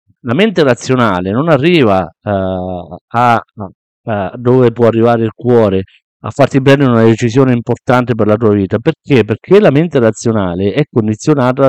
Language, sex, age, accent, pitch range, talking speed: Italian, male, 50-69, native, 100-125 Hz, 155 wpm